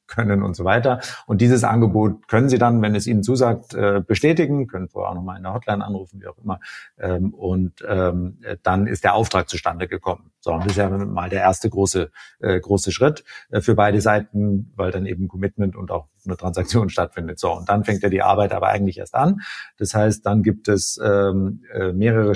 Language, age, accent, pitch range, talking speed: German, 50-69, German, 95-115 Hz, 195 wpm